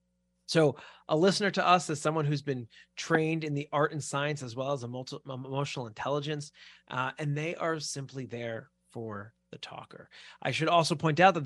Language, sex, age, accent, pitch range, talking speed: English, male, 30-49, American, 130-165 Hz, 195 wpm